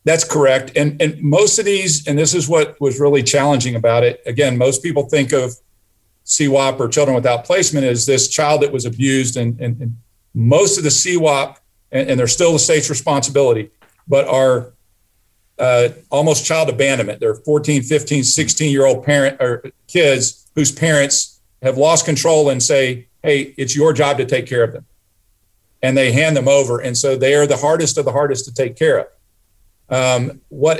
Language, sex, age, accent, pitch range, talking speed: English, male, 50-69, American, 120-145 Hz, 180 wpm